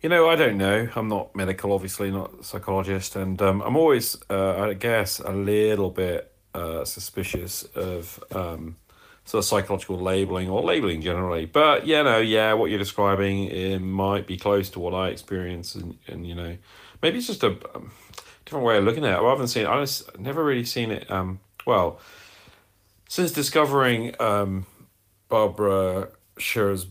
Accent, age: British, 40-59